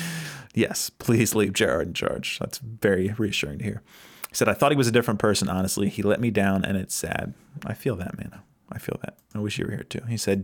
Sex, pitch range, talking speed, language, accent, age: male, 100-115 Hz, 245 wpm, English, American, 30-49